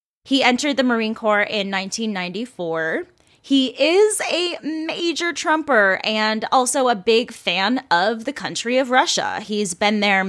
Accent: American